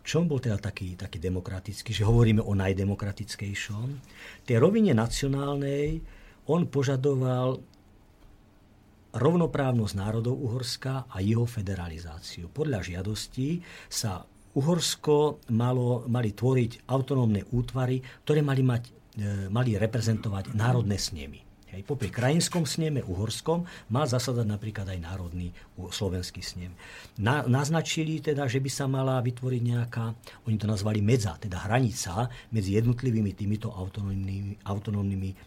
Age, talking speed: 50-69, 120 wpm